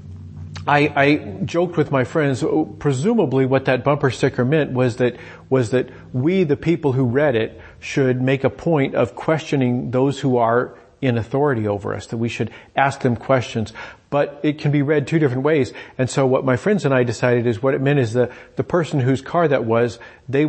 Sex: male